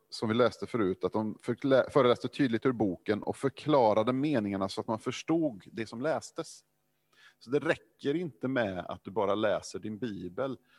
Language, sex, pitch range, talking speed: Swedish, male, 100-140 Hz, 170 wpm